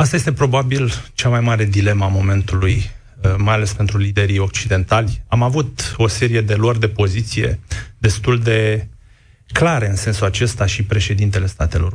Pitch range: 100-120 Hz